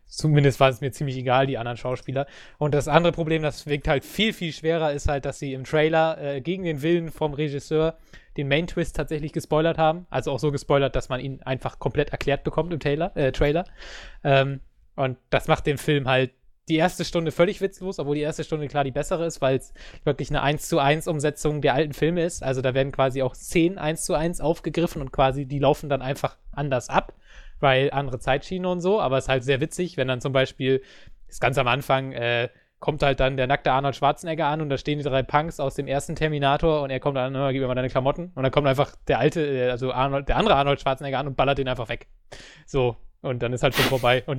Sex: male